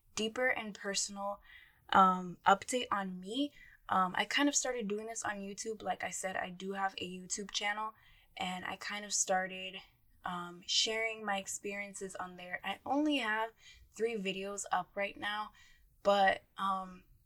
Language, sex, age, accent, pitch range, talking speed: English, female, 10-29, American, 185-220 Hz, 160 wpm